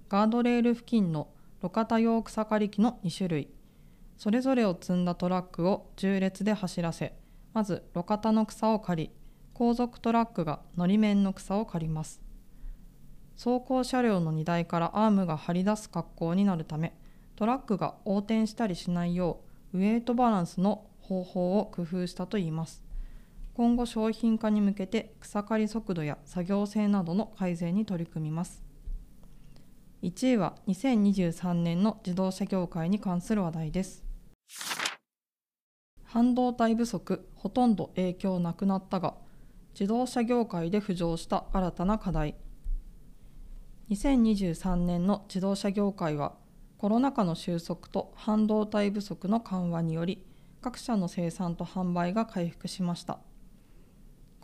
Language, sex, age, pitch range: Japanese, female, 20-39, 175-215 Hz